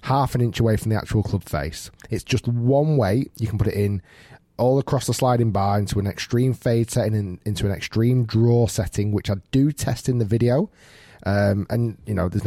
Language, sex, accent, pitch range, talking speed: English, male, British, 95-115 Hz, 220 wpm